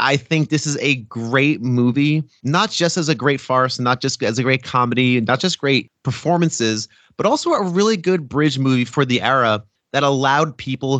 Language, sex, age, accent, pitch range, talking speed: English, male, 30-49, American, 115-145 Hz, 200 wpm